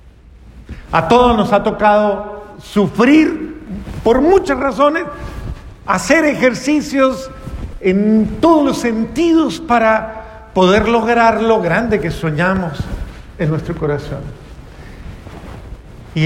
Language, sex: Spanish, male